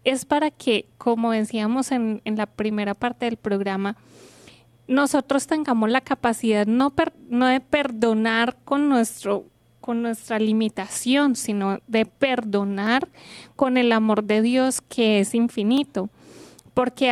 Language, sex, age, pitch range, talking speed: Spanish, female, 20-39, 210-255 Hz, 125 wpm